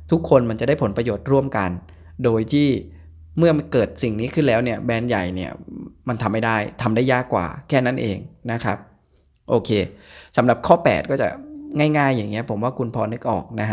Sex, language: male, Thai